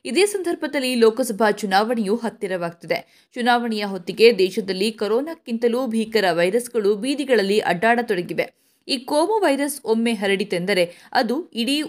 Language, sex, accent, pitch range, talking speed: Kannada, female, native, 190-255 Hz, 100 wpm